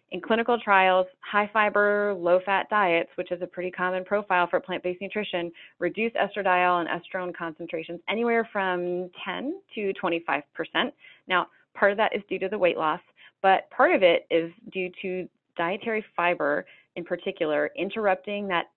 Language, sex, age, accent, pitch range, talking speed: English, female, 30-49, American, 175-225 Hz, 155 wpm